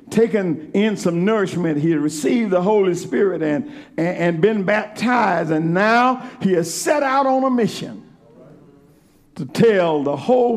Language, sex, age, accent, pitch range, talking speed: English, male, 60-79, American, 160-245 Hz, 150 wpm